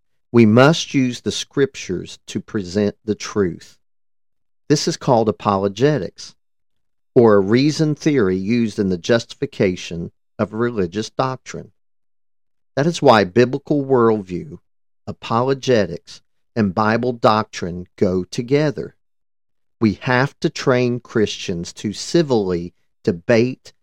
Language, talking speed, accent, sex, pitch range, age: English, 110 wpm, American, male, 95-125 Hz, 50-69